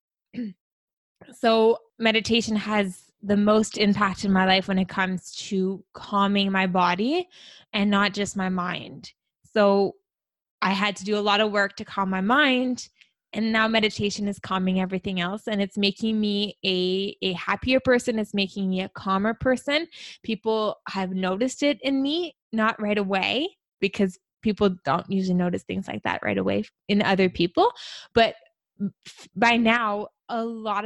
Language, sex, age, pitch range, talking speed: English, female, 20-39, 190-220 Hz, 160 wpm